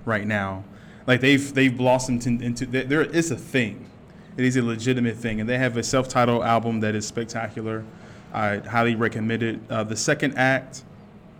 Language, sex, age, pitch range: English, male, 20-39, 115-160 Hz